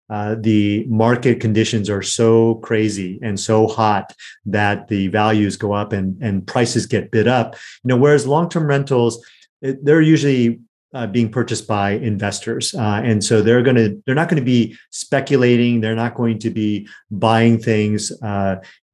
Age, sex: 30-49, male